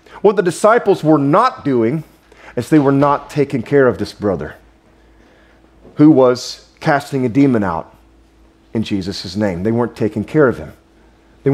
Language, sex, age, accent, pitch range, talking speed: English, male, 40-59, American, 105-160 Hz, 160 wpm